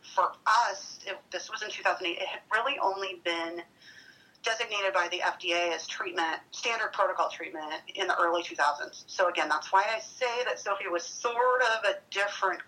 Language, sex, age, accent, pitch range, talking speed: English, female, 30-49, American, 170-225 Hz, 175 wpm